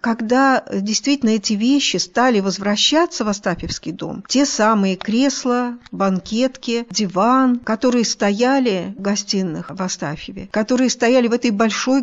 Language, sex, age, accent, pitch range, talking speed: Russian, female, 50-69, native, 195-245 Hz, 125 wpm